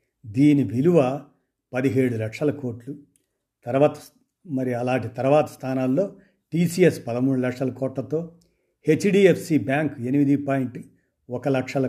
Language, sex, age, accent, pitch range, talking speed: Telugu, male, 50-69, native, 120-145 Hz, 100 wpm